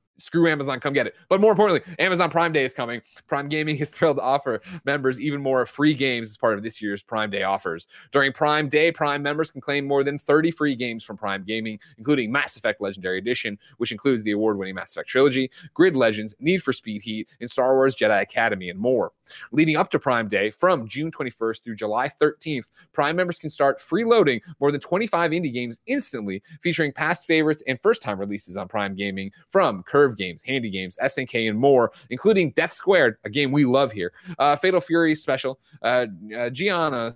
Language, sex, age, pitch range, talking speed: English, male, 30-49, 120-165 Hz, 205 wpm